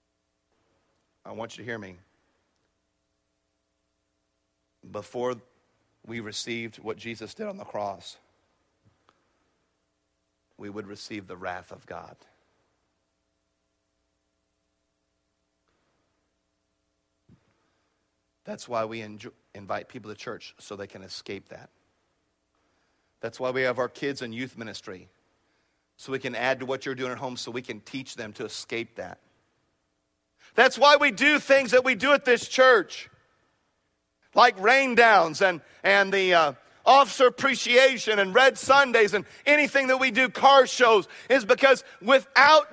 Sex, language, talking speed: male, English, 130 wpm